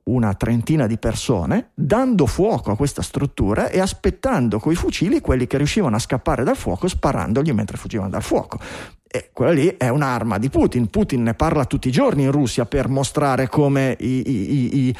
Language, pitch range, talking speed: Italian, 115-145 Hz, 190 wpm